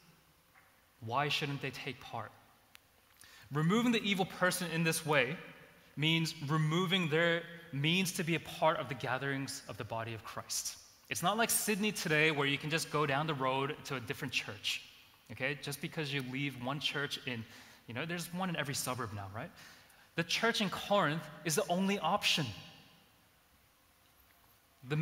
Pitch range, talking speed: 115-160 Hz, 170 wpm